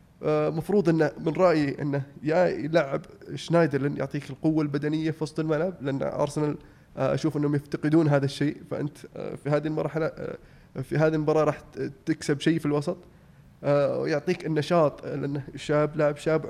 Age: 20-39